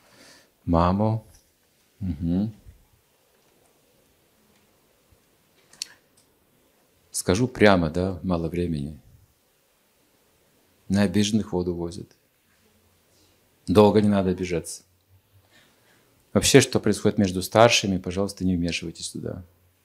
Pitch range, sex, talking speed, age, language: 90-110 Hz, male, 70 wpm, 50-69, Russian